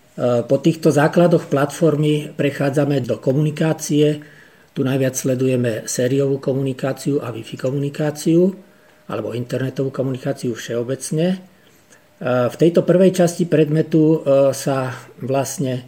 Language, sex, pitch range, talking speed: Slovak, male, 120-150 Hz, 100 wpm